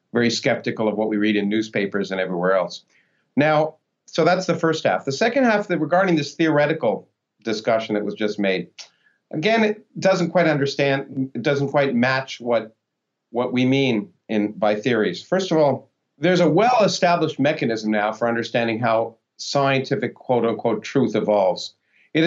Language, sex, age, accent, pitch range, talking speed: English, male, 50-69, American, 115-160 Hz, 165 wpm